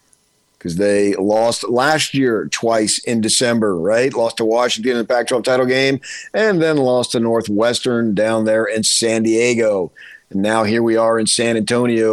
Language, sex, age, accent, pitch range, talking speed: English, male, 50-69, American, 105-125 Hz, 175 wpm